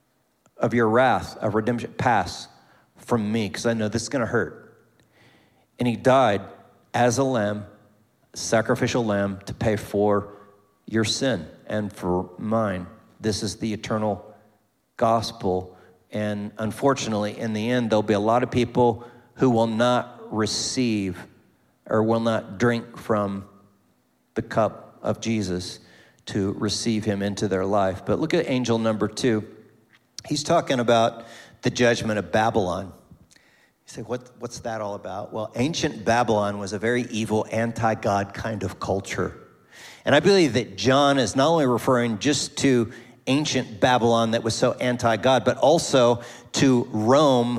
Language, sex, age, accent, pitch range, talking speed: English, male, 40-59, American, 105-125 Hz, 150 wpm